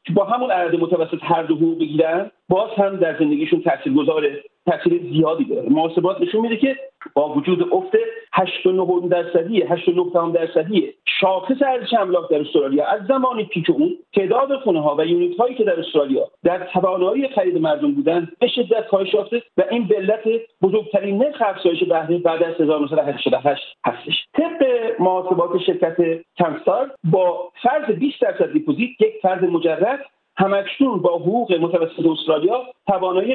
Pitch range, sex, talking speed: 170-250 Hz, male, 150 wpm